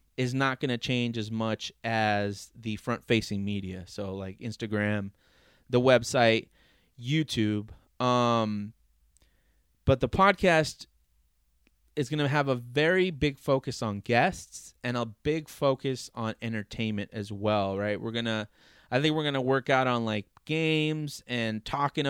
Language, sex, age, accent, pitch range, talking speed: English, male, 30-49, American, 110-135 Hz, 150 wpm